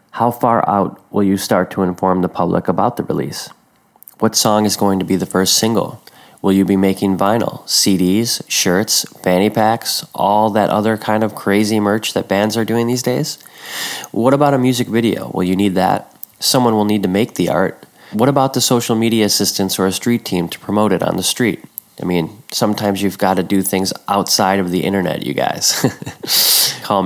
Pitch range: 95-110 Hz